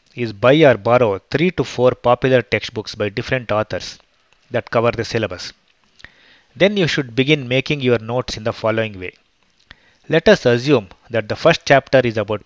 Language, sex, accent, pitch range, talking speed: English, male, Indian, 115-150 Hz, 175 wpm